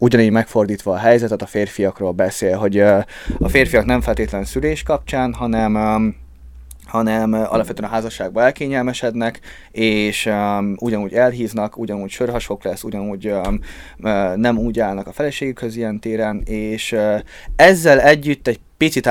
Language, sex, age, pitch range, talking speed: Hungarian, male, 20-39, 105-125 Hz, 120 wpm